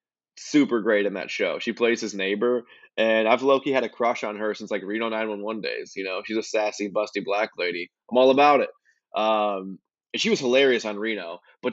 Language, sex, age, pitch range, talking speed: English, male, 20-39, 105-125 Hz, 225 wpm